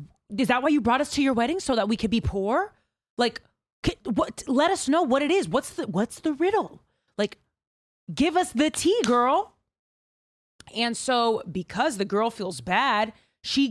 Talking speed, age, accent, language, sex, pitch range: 185 wpm, 20-39, American, English, female, 190-315 Hz